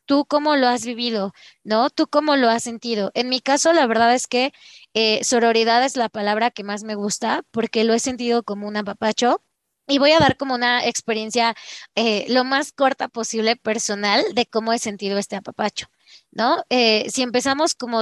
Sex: female